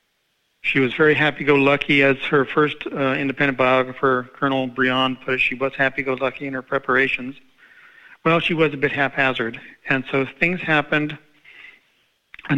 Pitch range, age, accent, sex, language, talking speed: 130-145 Hz, 40-59, American, male, English, 150 wpm